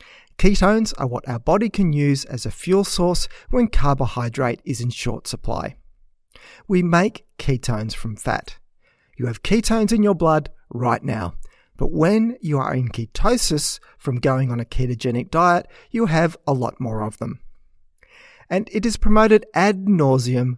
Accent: Australian